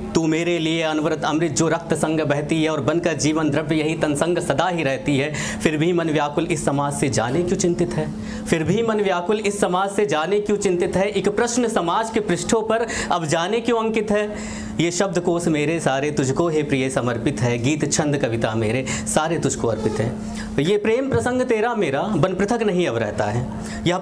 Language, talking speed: Hindi, 210 wpm